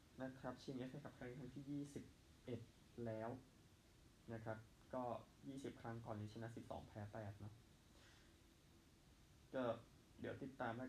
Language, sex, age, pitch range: Thai, male, 20-39, 110-125 Hz